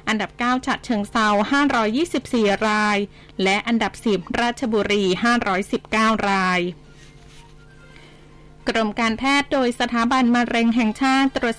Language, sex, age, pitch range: Thai, female, 20-39, 210-260 Hz